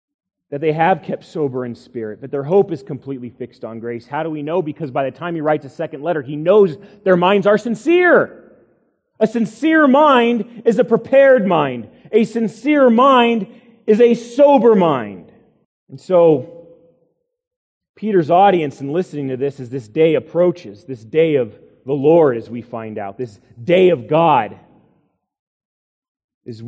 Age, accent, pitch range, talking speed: 30-49, American, 145-215 Hz, 165 wpm